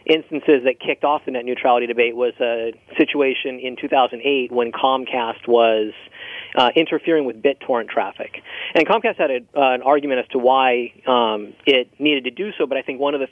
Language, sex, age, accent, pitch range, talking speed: English, male, 30-49, American, 125-150 Hz, 190 wpm